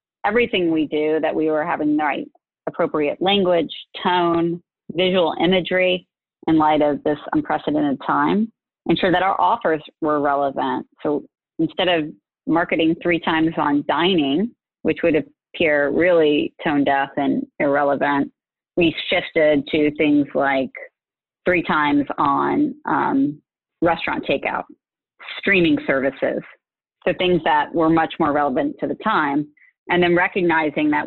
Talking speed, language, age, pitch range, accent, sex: 135 wpm, English, 30-49, 150-185 Hz, American, female